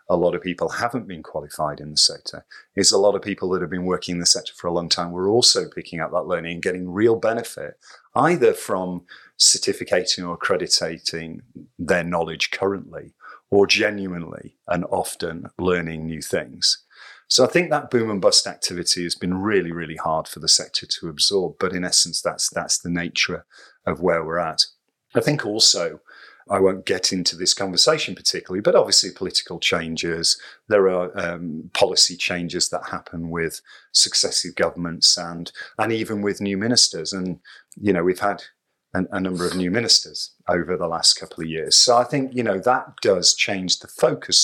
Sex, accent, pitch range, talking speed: male, British, 85-105 Hz, 185 wpm